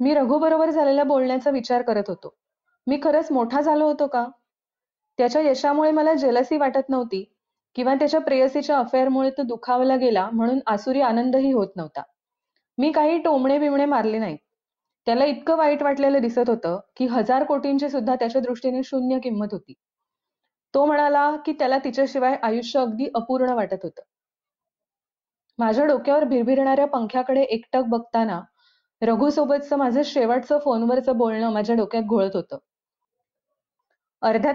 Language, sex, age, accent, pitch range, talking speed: Marathi, female, 30-49, native, 235-290 Hz, 135 wpm